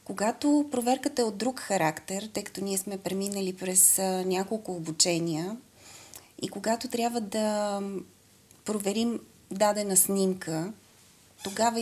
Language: Bulgarian